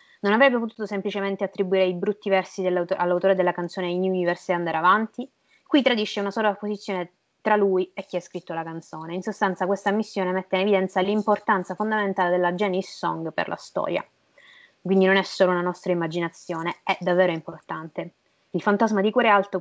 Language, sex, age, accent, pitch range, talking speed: Italian, female, 20-39, native, 180-215 Hz, 180 wpm